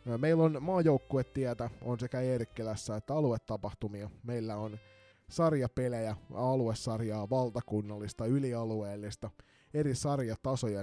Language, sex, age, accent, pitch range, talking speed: Finnish, male, 20-39, native, 110-145 Hz, 90 wpm